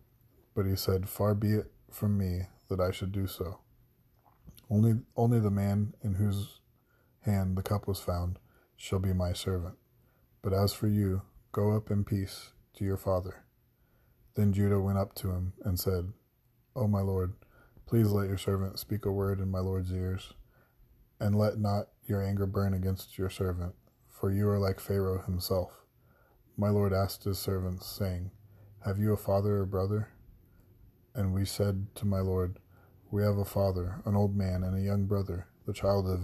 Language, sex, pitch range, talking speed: English, male, 95-105 Hz, 180 wpm